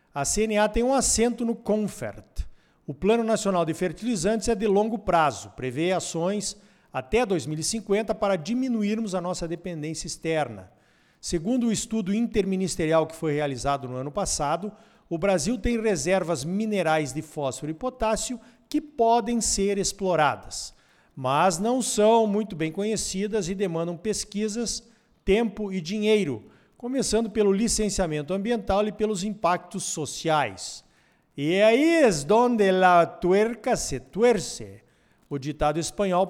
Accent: Brazilian